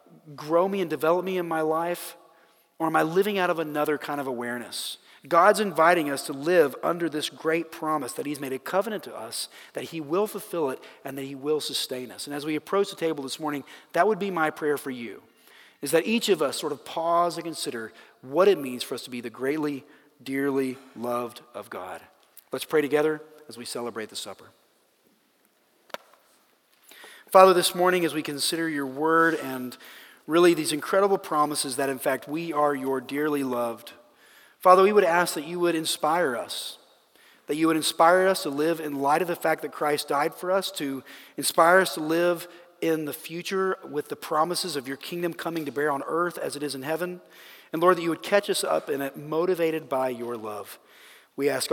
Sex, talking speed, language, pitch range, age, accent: male, 205 wpm, English, 140-175 Hz, 40-59, American